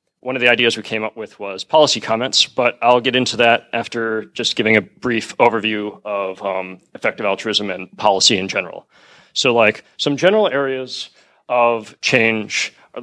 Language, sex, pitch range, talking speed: English, male, 110-130 Hz, 175 wpm